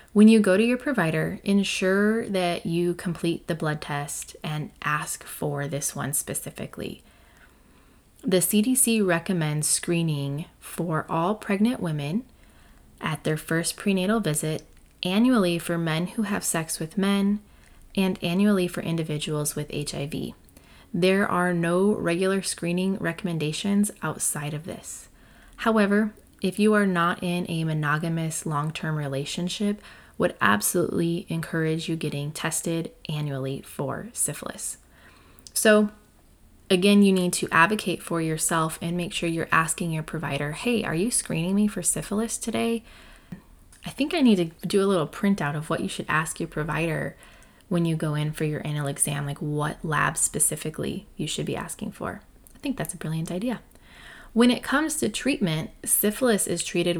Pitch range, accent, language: 155-205 Hz, American, English